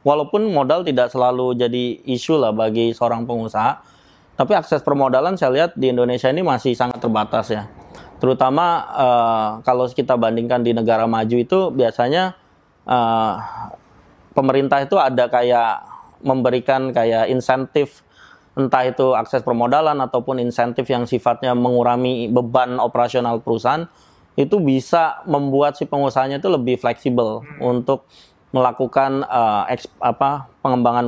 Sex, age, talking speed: male, 20-39, 125 wpm